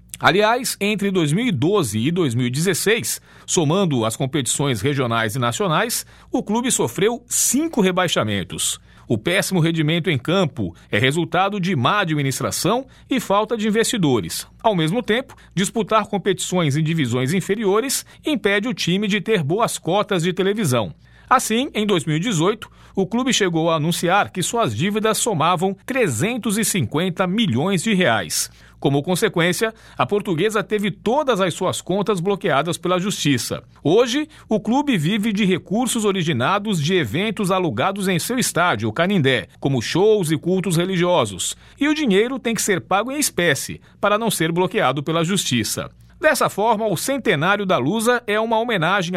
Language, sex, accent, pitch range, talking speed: Portuguese, male, Brazilian, 160-220 Hz, 145 wpm